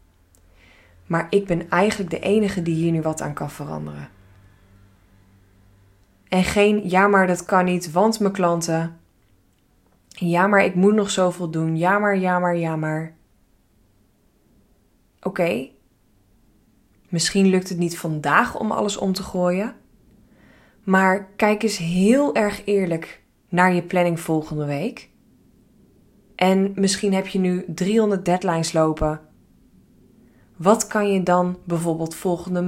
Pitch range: 160-200 Hz